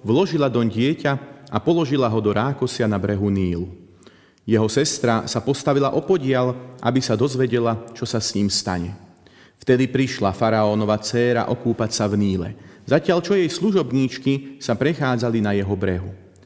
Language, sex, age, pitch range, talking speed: Slovak, male, 40-59, 110-140 Hz, 150 wpm